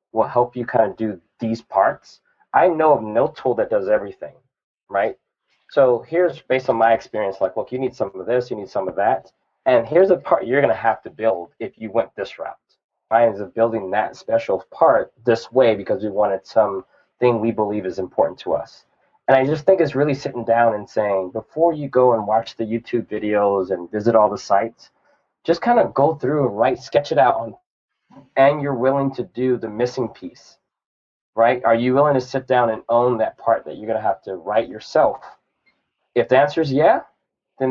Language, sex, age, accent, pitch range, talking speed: English, male, 30-49, American, 115-140 Hz, 215 wpm